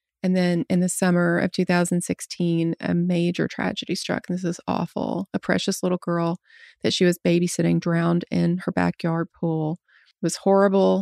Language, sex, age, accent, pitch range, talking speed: English, female, 30-49, American, 170-185 Hz, 170 wpm